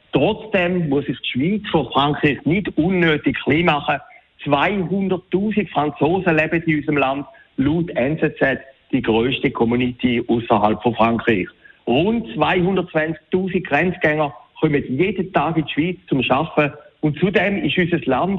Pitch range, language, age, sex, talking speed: 145-185 Hz, German, 60-79, male, 135 wpm